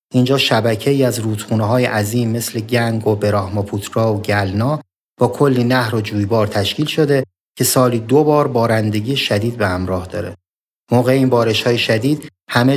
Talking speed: 155 wpm